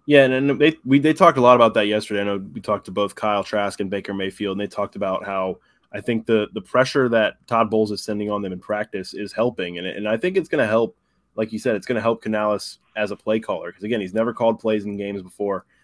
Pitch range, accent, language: 100-115 Hz, American, English